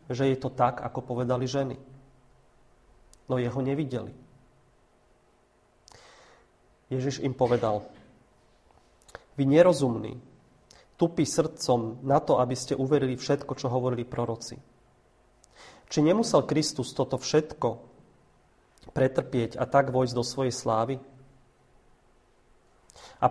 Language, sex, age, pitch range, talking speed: Slovak, male, 30-49, 125-140 Hz, 100 wpm